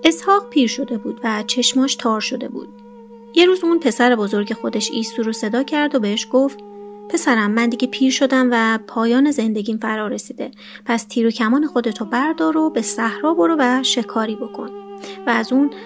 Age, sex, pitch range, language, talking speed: 30-49, female, 205-260 Hz, Persian, 180 wpm